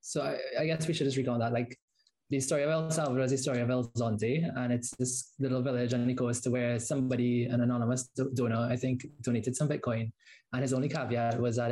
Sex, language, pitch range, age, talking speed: male, English, 120-135 Hz, 20-39, 235 wpm